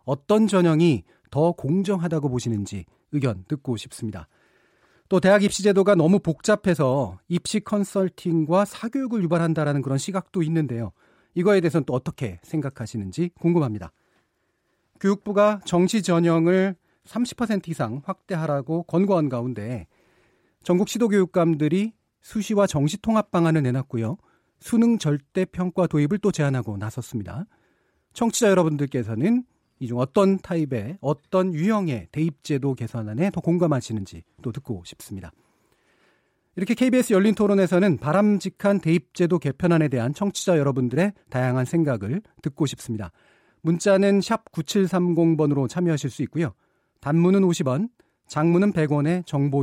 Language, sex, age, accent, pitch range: Korean, male, 40-59, native, 135-195 Hz